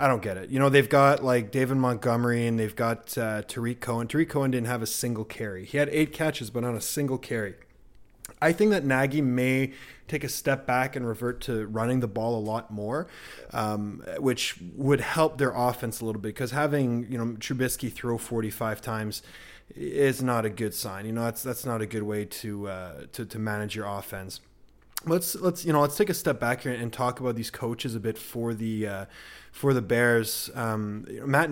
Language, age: English, 20-39